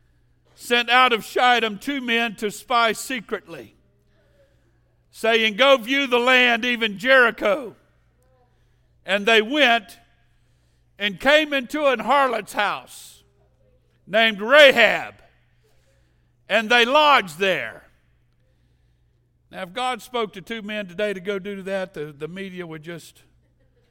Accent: American